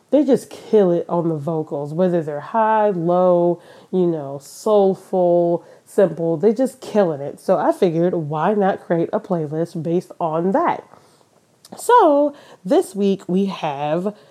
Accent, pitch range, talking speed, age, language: American, 165-210 Hz, 145 wpm, 20-39, English